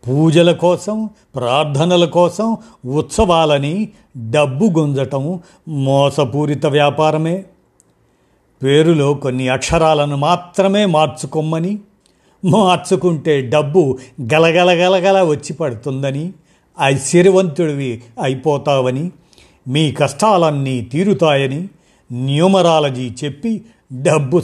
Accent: native